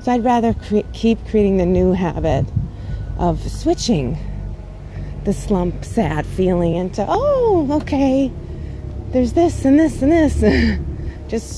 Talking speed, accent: 130 wpm, American